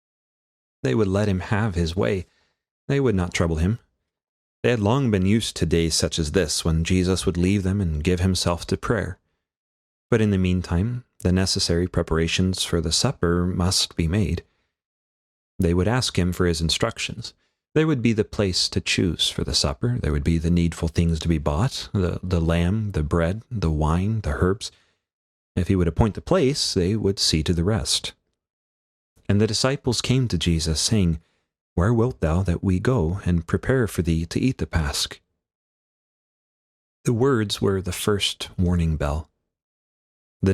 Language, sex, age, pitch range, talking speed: English, male, 30-49, 80-100 Hz, 180 wpm